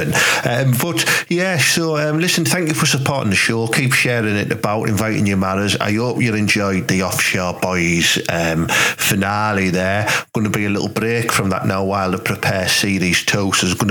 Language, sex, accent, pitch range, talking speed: English, male, British, 100-135 Hz, 195 wpm